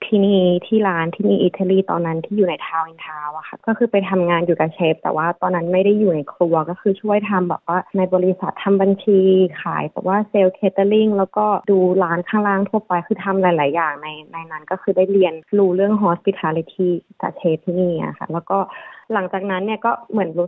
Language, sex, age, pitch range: Thai, female, 20-39, 170-200 Hz